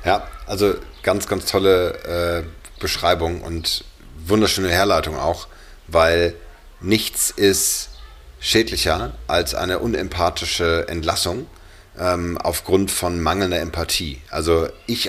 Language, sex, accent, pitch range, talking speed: English, male, German, 80-95 Hz, 105 wpm